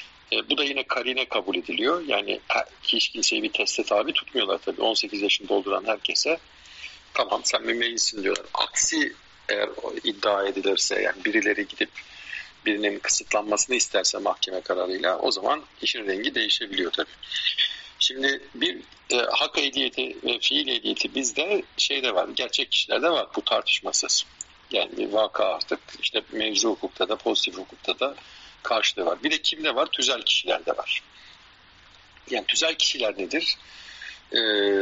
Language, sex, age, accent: Turkish, male, 50-69, native